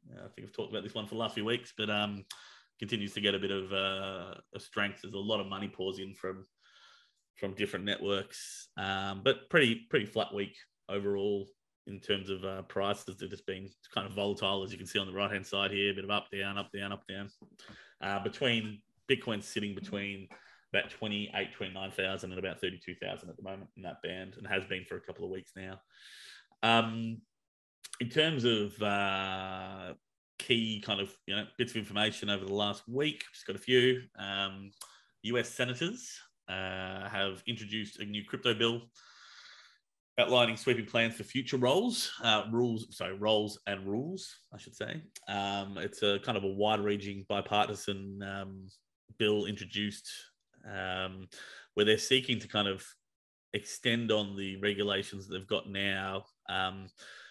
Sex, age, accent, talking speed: male, 20-39, Australian, 180 wpm